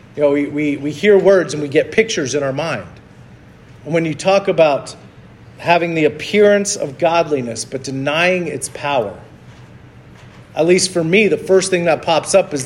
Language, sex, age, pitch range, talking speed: English, male, 40-59, 150-185 Hz, 180 wpm